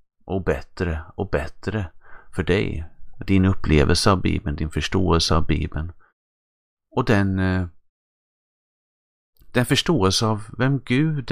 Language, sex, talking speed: Swedish, male, 110 wpm